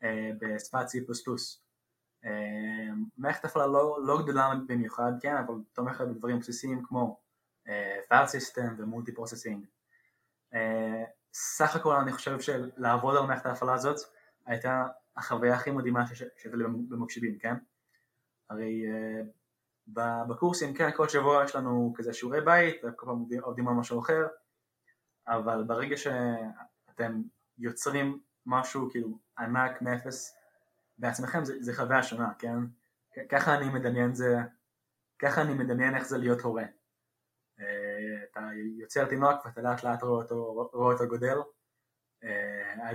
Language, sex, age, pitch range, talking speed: Hebrew, male, 20-39, 115-130 Hz, 125 wpm